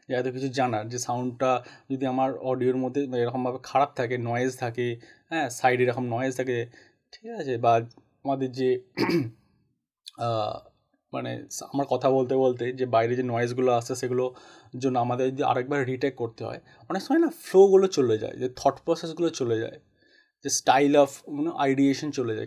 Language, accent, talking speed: Bengali, native, 160 wpm